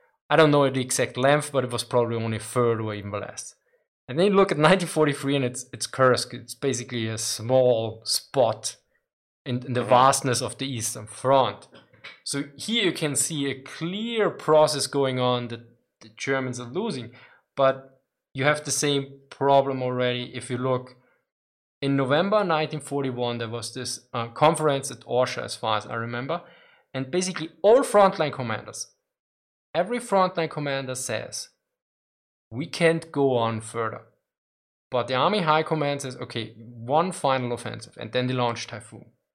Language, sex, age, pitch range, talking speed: English, male, 20-39, 120-155 Hz, 165 wpm